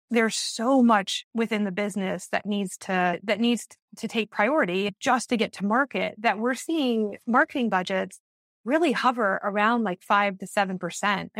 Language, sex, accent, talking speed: English, female, American, 165 wpm